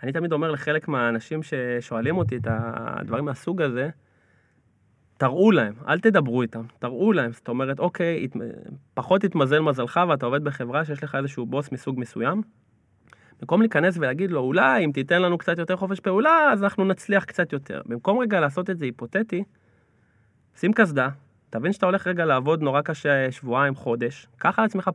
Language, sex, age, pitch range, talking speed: Hebrew, male, 20-39, 125-185 Hz, 170 wpm